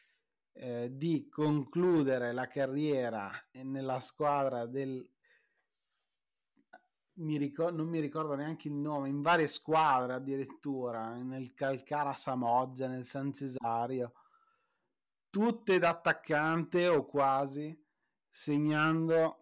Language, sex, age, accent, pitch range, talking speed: Italian, male, 30-49, native, 130-155 Hz, 100 wpm